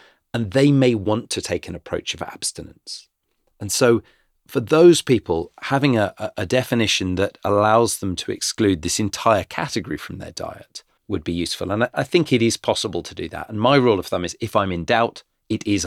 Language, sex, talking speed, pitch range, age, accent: English, male, 205 wpm, 90-125 Hz, 40-59, British